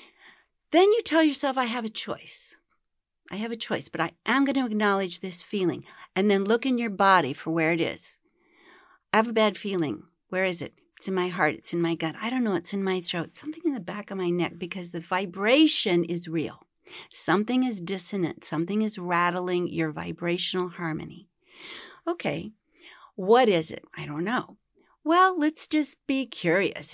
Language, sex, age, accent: English, female, 40-59, American